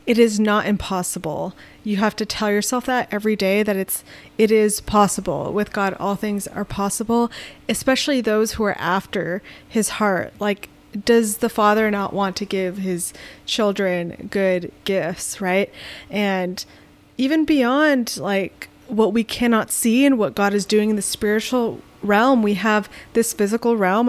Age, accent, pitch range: 20-39, American, 195-230 Hz